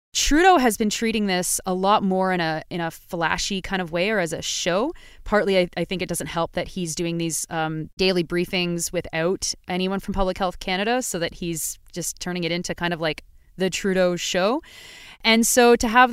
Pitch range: 175-215 Hz